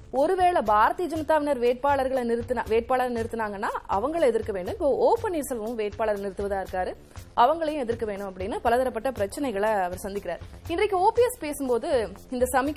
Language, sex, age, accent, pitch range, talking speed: Tamil, female, 20-39, native, 210-275 Hz, 60 wpm